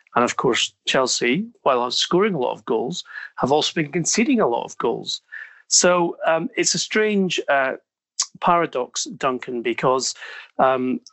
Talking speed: 150 wpm